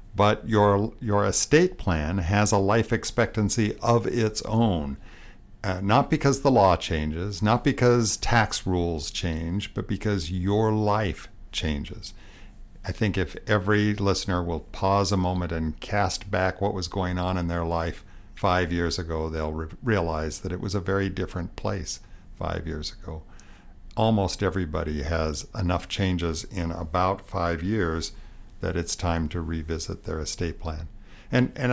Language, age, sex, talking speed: English, 60-79, male, 155 wpm